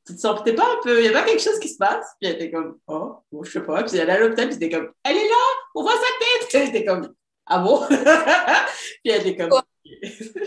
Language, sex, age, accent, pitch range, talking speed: French, female, 30-49, French, 165-230 Hz, 310 wpm